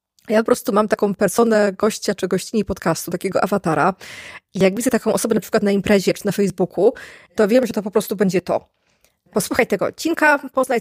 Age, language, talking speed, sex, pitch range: 20-39, Polish, 200 wpm, female, 180-220 Hz